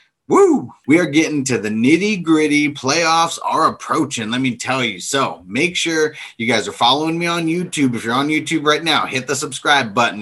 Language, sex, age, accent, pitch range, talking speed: English, male, 30-49, American, 130-170 Hz, 205 wpm